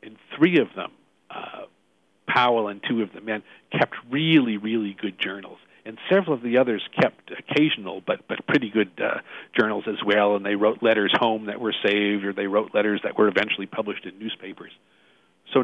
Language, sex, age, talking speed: English, male, 50-69, 190 wpm